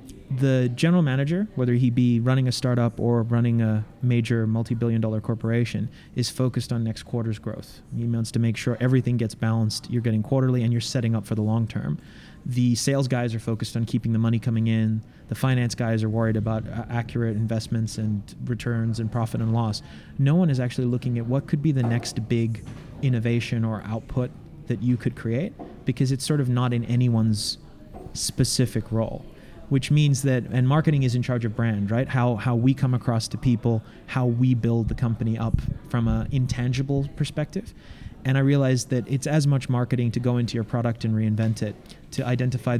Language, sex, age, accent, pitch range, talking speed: English, male, 30-49, American, 115-130 Hz, 200 wpm